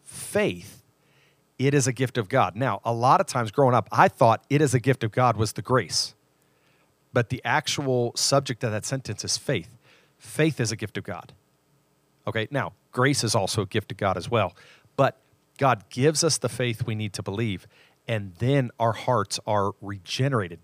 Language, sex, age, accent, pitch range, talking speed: English, male, 40-59, American, 105-135 Hz, 195 wpm